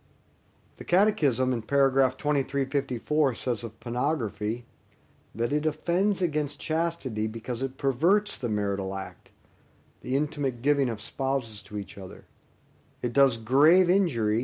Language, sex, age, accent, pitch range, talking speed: English, male, 50-69, American, 110-150 Hz, 130 wpm